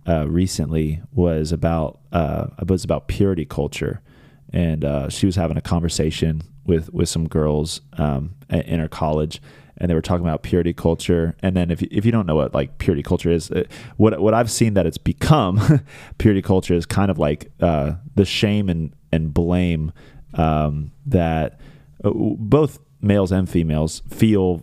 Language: English